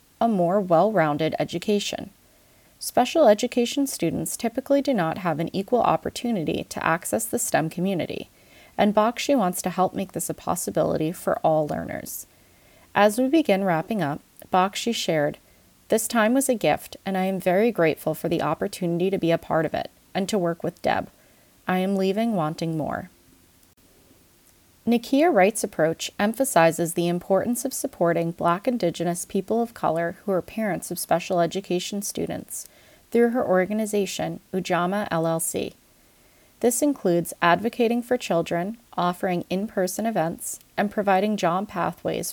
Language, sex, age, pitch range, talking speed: English, female, 30-49, 170-220 Hz, 145 wpm